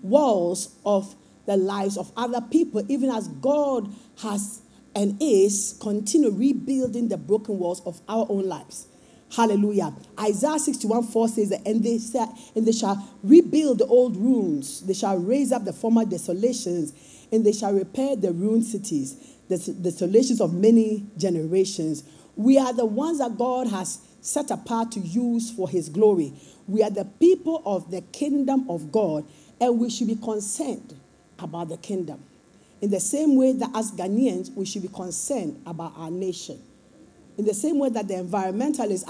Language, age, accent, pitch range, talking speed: English, 50-69, Nigerian, 190-250 Hz, 165 wpm